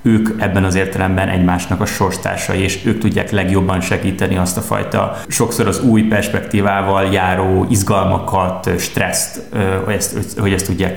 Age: 30-49